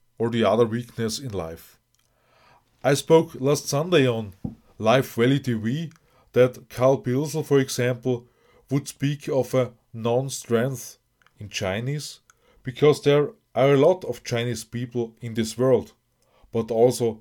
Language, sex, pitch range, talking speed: English, male, 115-135 Hz, 135 wpm